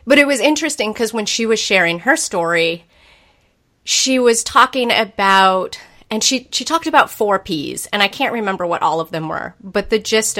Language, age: English, 30-49